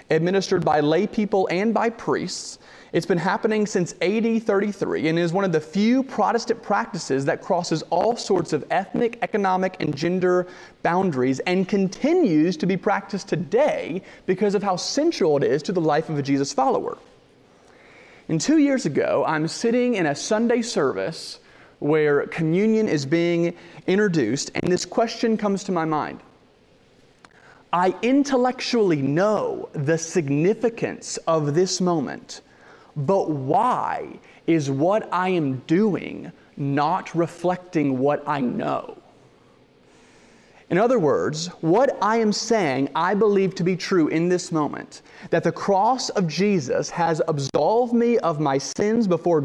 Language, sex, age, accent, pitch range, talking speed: English, male, 30-49, American, 160-215 Hz, 145 wpm